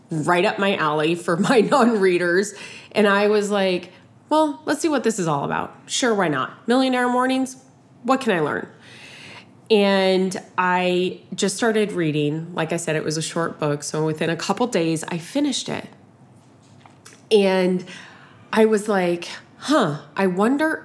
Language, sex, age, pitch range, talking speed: English, female, 20-39, 160-215 Hz, 160 wpm